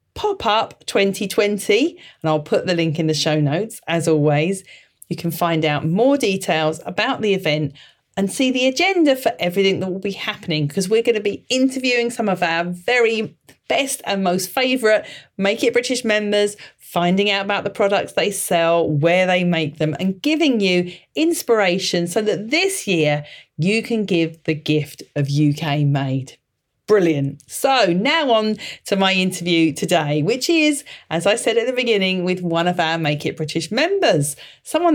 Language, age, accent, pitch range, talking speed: English, 40-59, British, 155-225 Hz, 175 wpm